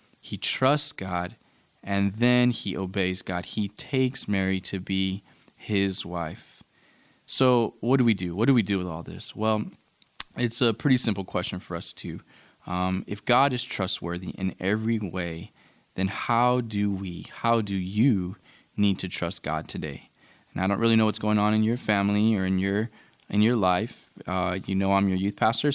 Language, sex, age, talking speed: English, male, 20-39, 185 wpm